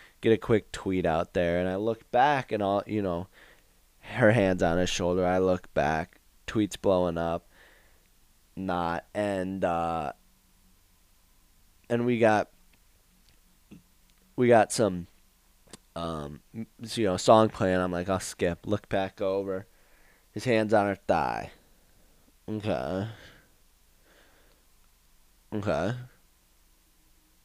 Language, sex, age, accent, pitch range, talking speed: English, male, 20-39, American, 85-105 Hz, 115 wpm